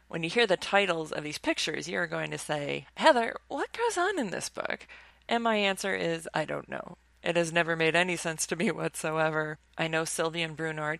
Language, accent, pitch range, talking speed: English, American, 155-225 Hz, 225 wpm